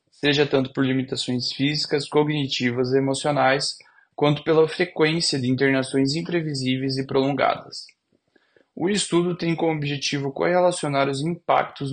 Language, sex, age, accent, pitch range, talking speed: Portuguese, male, 20-39, Brazilian, 125-150 Hz, 120 wpm